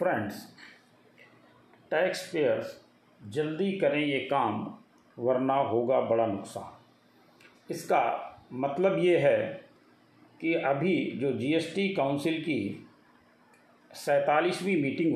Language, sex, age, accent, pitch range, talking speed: Hindi, male, 40-59, native, 135-180 Hz, 90 wpm